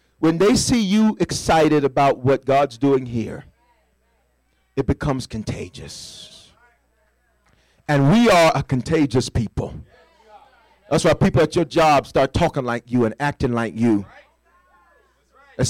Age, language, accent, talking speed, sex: 40-59, English, American, 130 wpm, male